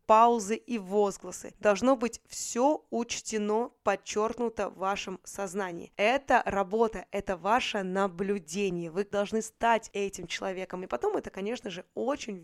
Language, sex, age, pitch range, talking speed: Russian, female, 20-39, 195-240 Hz, 130 wpm